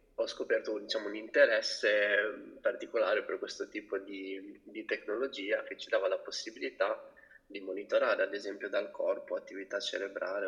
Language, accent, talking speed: Italian, native, 145 wpm